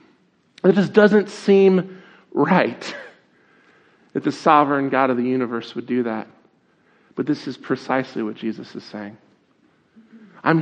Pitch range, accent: 115-145 Hz, American